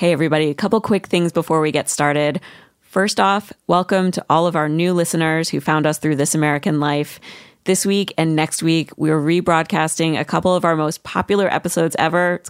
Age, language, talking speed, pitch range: 20-39, English, 200 wpm, 155-185 Hz